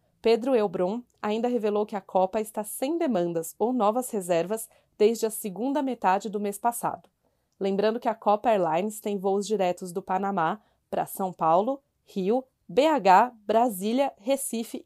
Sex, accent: female, Brazilian